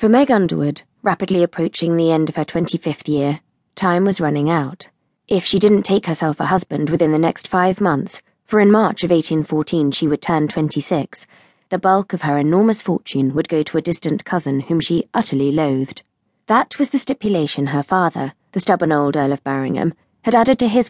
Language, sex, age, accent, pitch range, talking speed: English, female, 20-39, British, 150-205 Hz, 195 wpm